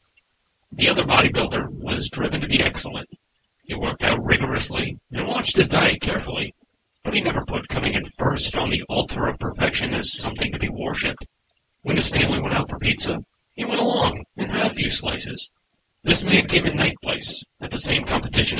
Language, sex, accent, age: English, male, American, 40-59